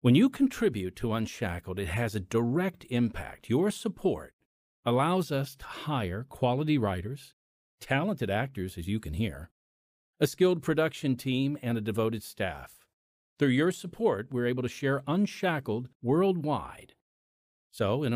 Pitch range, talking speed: 110-150 Hz, 140 wpm